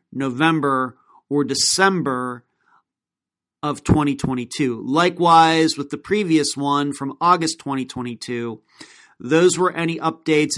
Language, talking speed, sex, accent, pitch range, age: English, 95 wpm, male, American, 140-170 Hz, 40-59